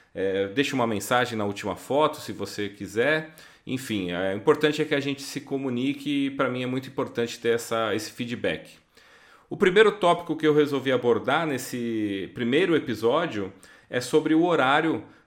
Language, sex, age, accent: Portuguese, male, 30-49, Brazilian